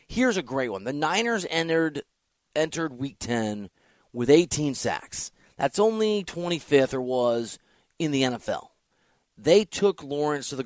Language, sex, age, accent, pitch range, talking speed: English, male, 30-49, American, 125-170 Hz, 145 wpm